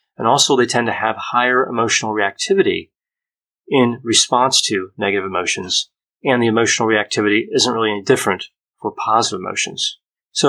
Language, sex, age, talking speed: English, male, 30-49, 150 wpm